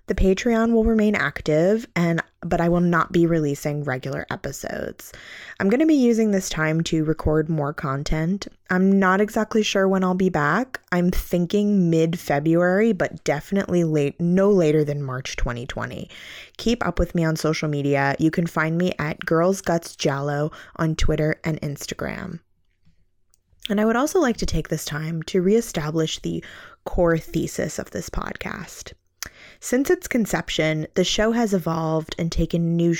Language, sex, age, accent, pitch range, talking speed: English, female, 20-39, American, 155-190 Hz, 160 wpm